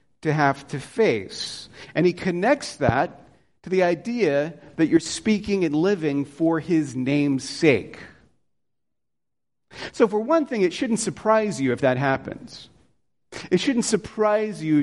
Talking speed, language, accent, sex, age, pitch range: 140 wpm, English, American, male, 40-59, 135-205 Hz